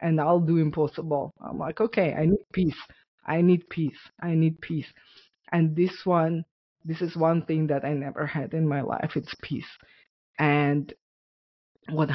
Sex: female